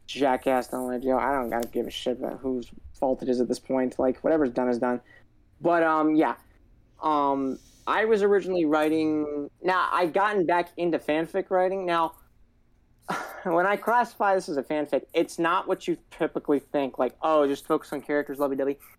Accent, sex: American, male